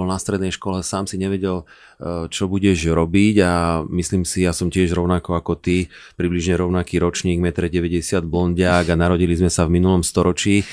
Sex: male